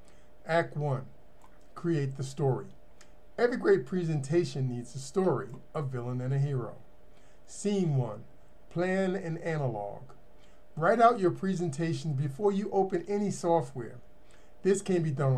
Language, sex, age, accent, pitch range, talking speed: English, male, 50-69, American, 130-175 Hz, 135 wpm